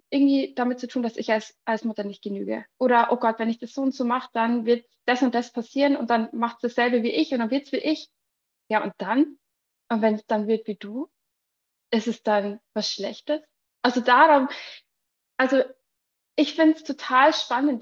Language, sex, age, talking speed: German, female, 20-39, 210 wpm